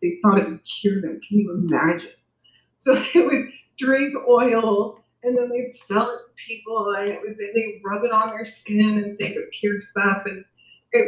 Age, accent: 30-49, American